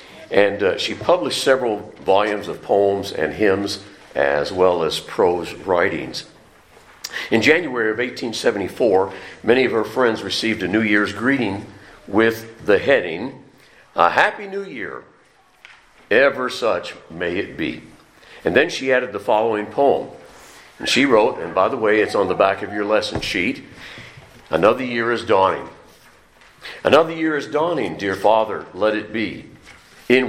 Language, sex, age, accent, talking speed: English, male, 50-69, American, 150 wpm